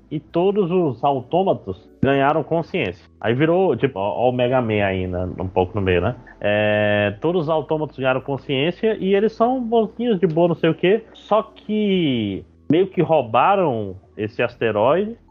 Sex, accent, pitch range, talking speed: male, Brazilian, 115-170 Hz, 160 wpm